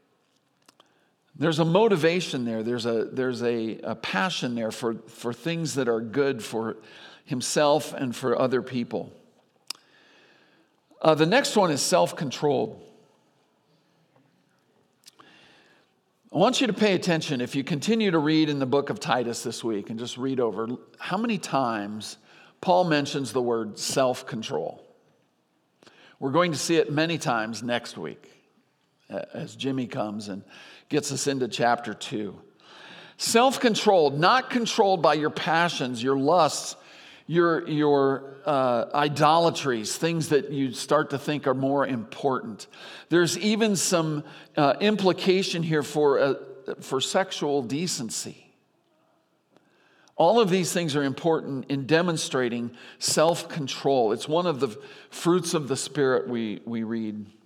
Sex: male